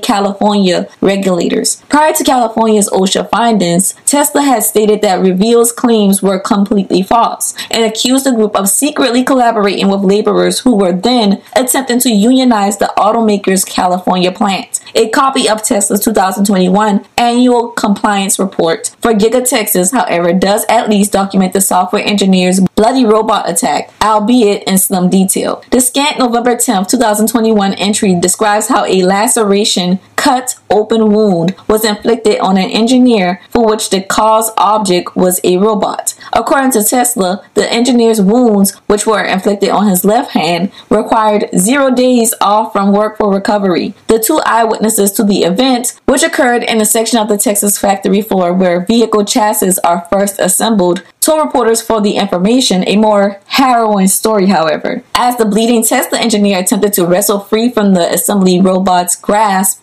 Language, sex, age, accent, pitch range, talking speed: English, female, 20-39, American, 195-235 Hz, 155 wpm